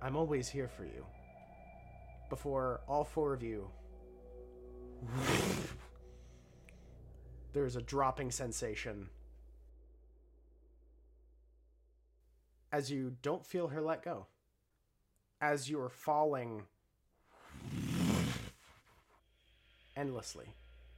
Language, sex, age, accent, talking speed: English, male, 30-49, American, 75 wpm